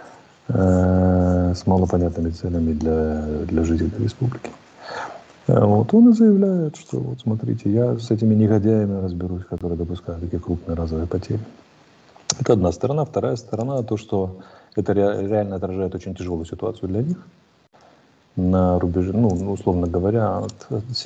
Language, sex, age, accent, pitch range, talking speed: Russian, male, 30-49, native, 90-115 Hz, 135 wpm